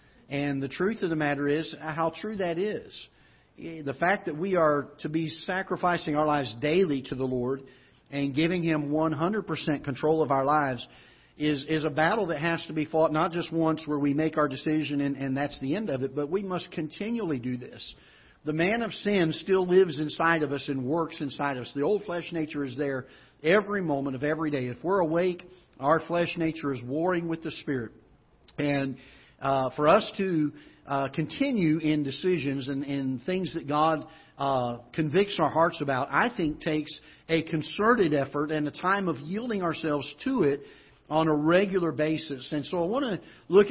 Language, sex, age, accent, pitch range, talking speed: English, male, 50-69, American, 145-175 Hz, 195 wpm